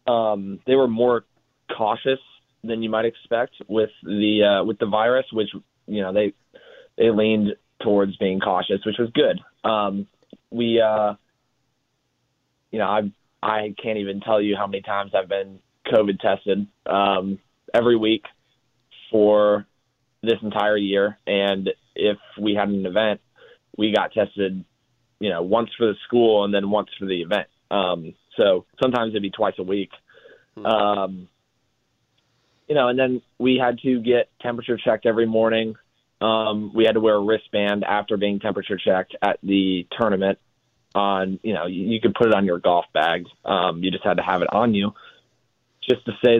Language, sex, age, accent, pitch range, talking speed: English, male, 20-39, American, 100-120 Hz, 170 wpm